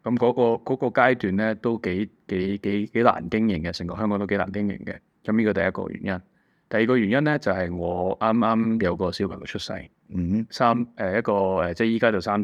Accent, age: native, 20-39